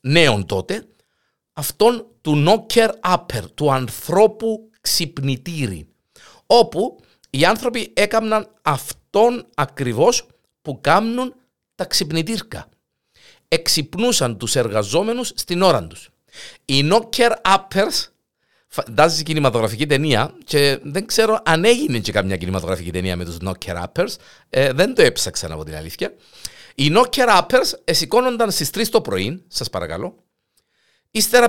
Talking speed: 115 wpm